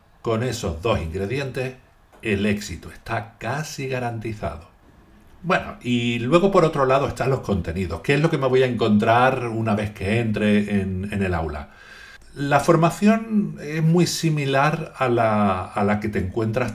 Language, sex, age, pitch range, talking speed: Spanish, male, 50-69, 100-135 Hz, 160 wpm